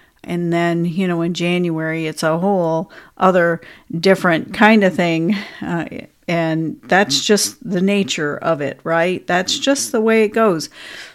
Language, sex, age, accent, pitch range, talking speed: English, female, 50-69, American, 175-225 Hz, 155 wpm